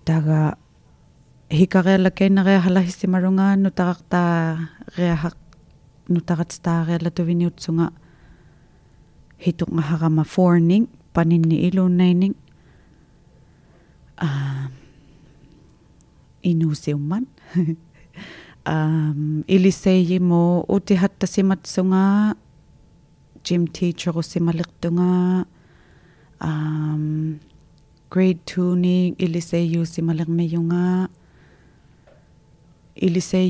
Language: English